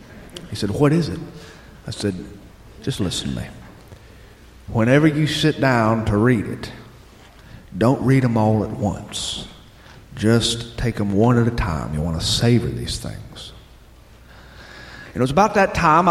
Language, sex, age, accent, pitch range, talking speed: English, male, 50-69, American, 100-130 Hz, 160 wpm